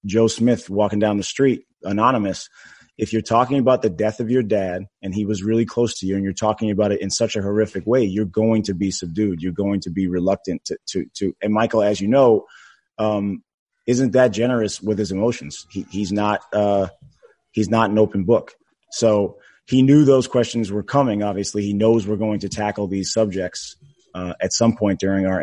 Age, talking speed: 30-49, 210 wpm